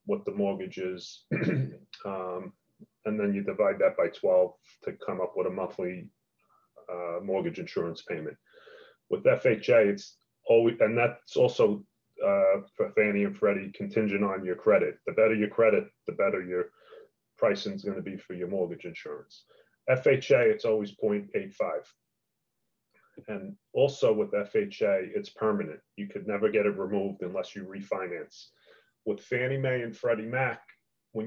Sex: male